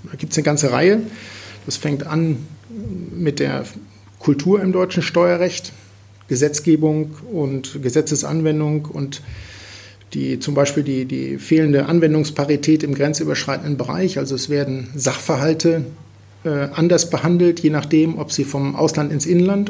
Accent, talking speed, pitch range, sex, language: German, 130 wpm, 130-160 Hz, male, German